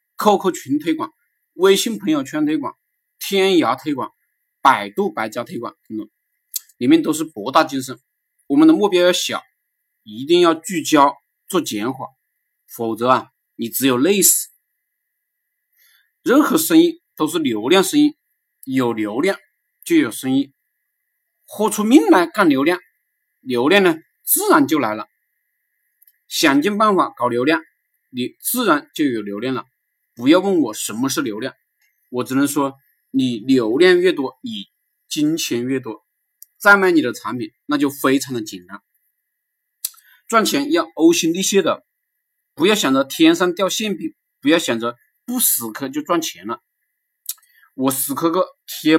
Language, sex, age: Chinese, male, 50-69